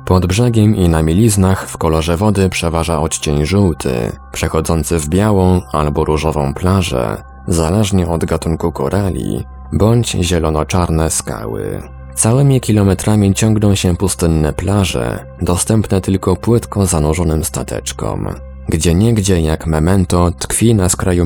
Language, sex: Polish, male